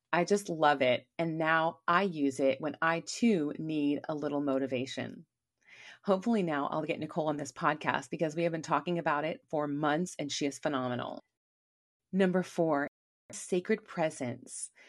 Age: 30-49